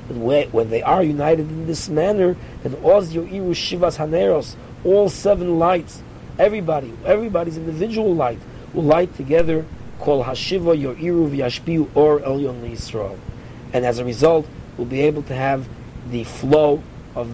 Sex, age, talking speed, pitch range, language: male, 40-59, 145 wpm, 130-165 Hz, English